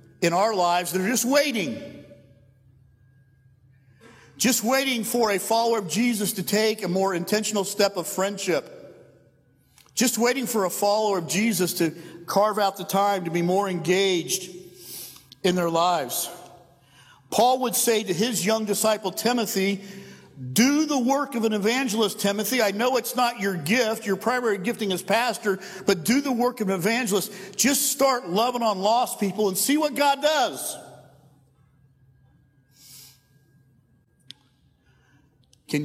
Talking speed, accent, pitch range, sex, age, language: 140 wpm, American, 135-215 Hz, male, 50-69, English